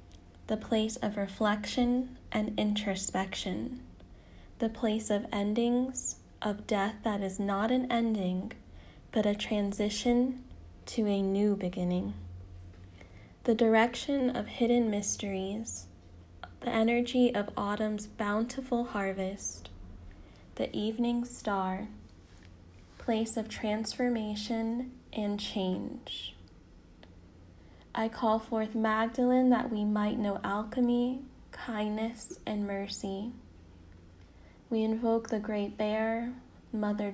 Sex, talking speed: female, 100 wpm